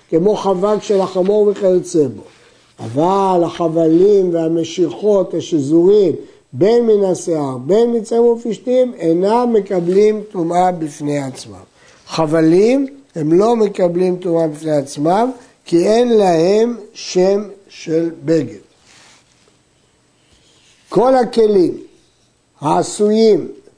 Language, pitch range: Hebrew, 170-215 Hz